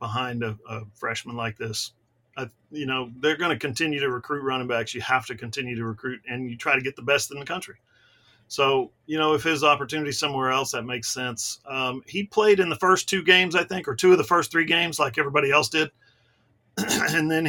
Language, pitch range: English, 120-165 Hz